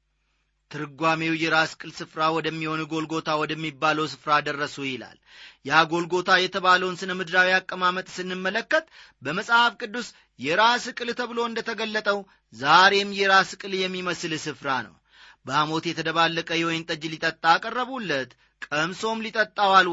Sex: male